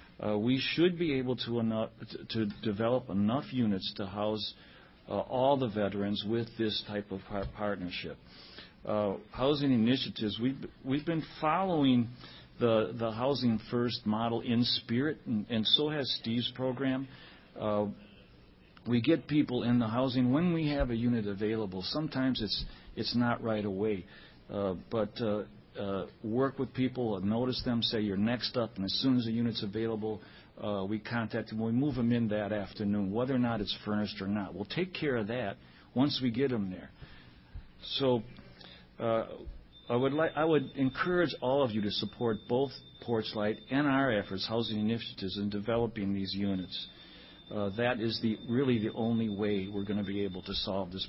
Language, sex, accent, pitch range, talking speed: English, male, American, 105-125 Hz, 175 wpm